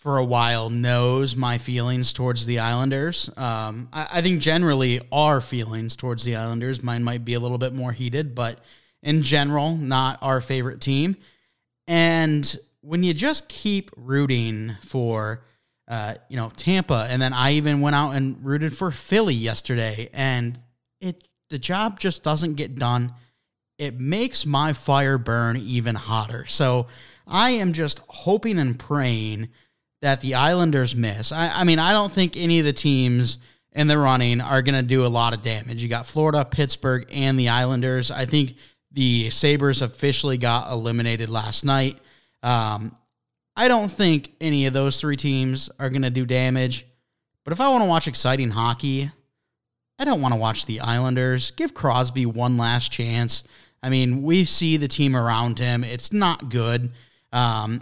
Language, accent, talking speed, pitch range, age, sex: English, American, 170 wpm, 120-150 Hz, 20-39, male